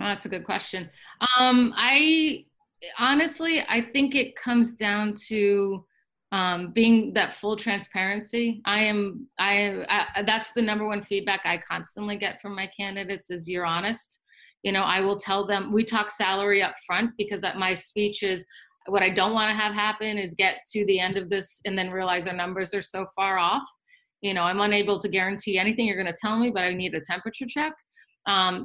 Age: 30-49